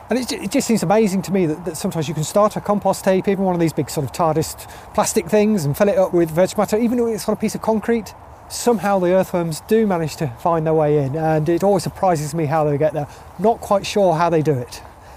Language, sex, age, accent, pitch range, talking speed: English, male, 30-49, British, 150-195 Hz, 265 wpm